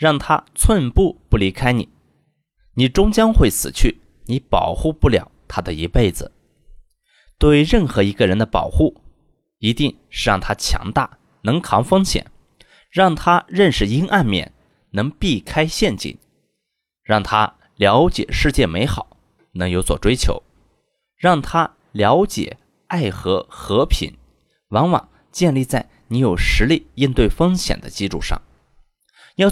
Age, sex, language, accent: 20-39, male, Chinese, native